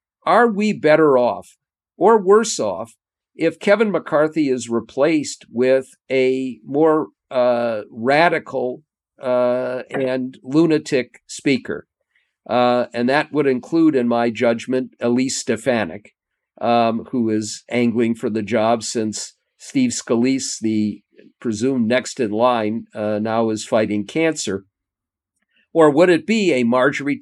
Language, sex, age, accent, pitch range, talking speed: English, male, 50-69, American, 115-135 Hz, 125 wpm